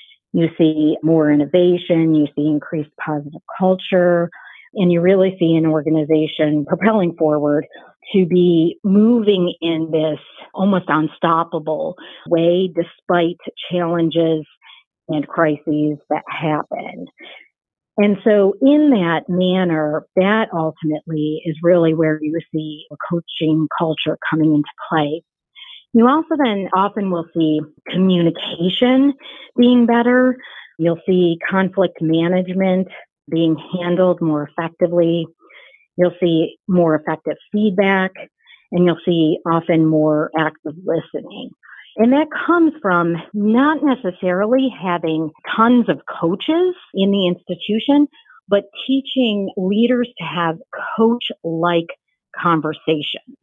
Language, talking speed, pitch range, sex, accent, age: English, 110 wpm, 160-205 Hz, female, American, 50-69